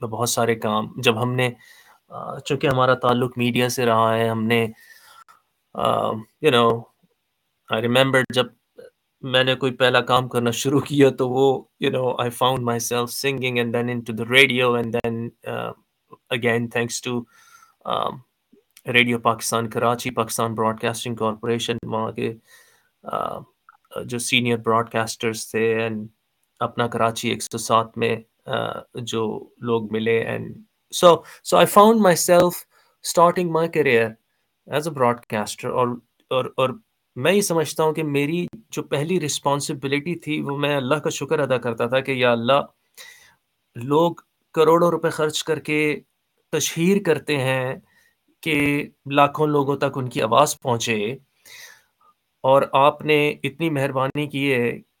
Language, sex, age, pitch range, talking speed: Urdu, male, 20-39, 115-150 Hz, 110 wpm